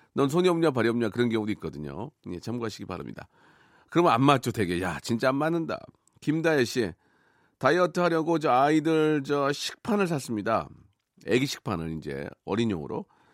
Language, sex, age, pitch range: Korean, male, 40-59, 115-180 Hz